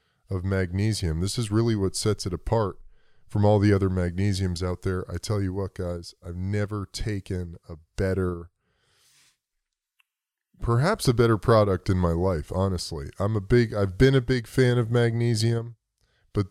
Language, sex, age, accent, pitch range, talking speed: English, male, 20-39, American, 90-110 Hz, 160 wpm